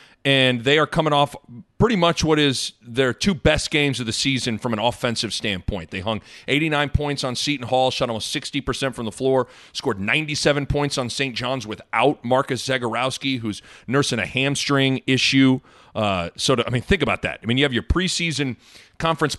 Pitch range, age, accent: 125-160 Hz, 30-49, American